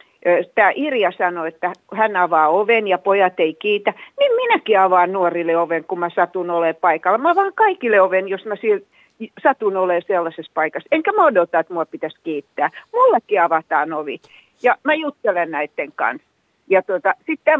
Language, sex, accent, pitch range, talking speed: Finnish, female, native, 170-220 Hz, 165 wpm